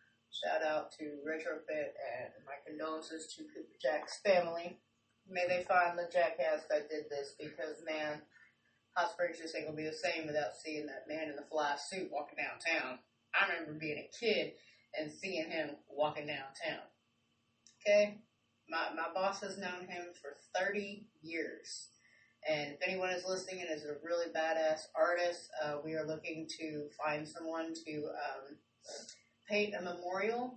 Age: 30-49